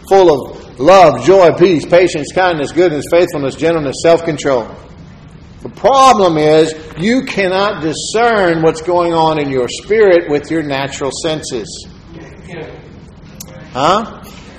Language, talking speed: English, 120 wpm